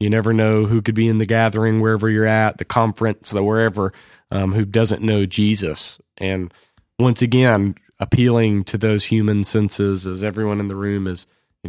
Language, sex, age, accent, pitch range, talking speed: English, male, 30-49, American, 100-125 Hz, 185 wpm